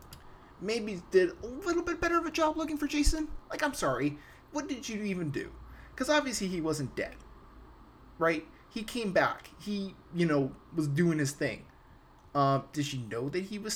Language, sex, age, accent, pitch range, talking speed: English, male, 20-39, American, 140-205 Hz, 190 wpm